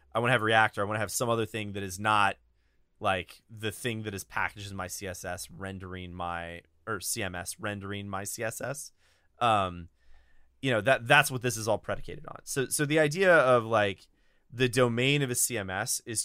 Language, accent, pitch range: English, American, 95-125 Hz